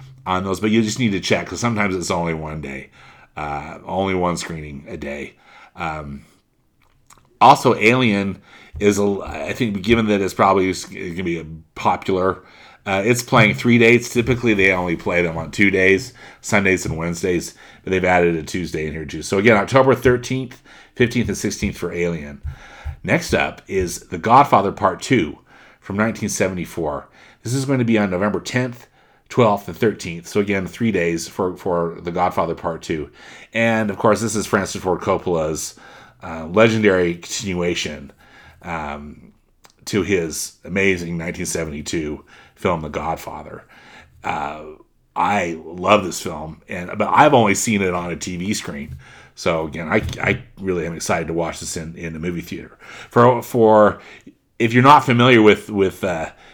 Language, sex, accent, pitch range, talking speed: English, male, American, 85-110 Hz, 165 wpm